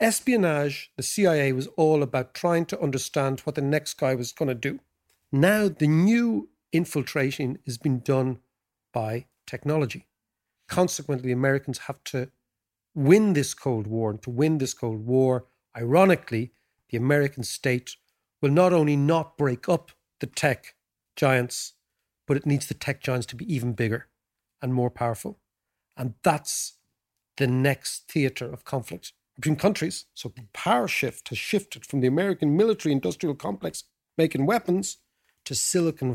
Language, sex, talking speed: English, male, 150 wpm